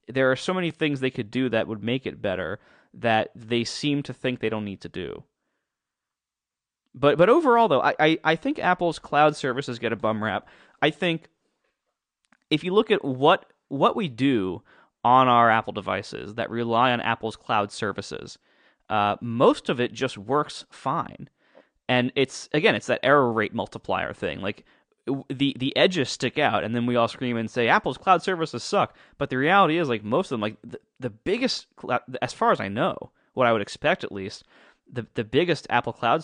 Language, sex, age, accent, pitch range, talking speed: English, male, 30-49, American, 115-150 Hz, 195 wpm